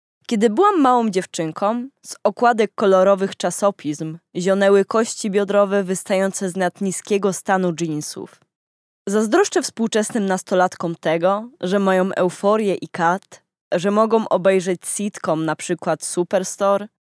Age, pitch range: 20-39, 175-225 Hz